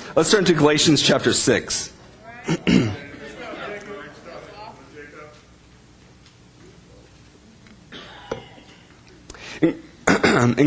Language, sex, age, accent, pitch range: English, male, 30-49, American, 120-185 Hz